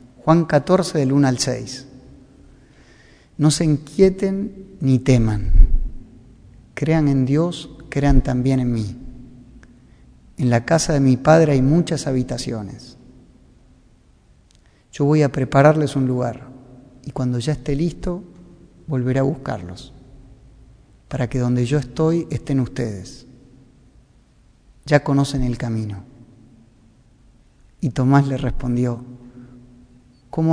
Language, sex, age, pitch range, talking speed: Spanish, male, 30-49, 125-145 Hz, 110 wpm